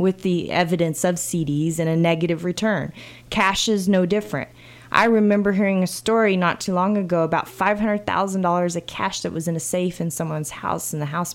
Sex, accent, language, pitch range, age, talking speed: female, American, English, 170-210 Hz, 20-39, 195 wpm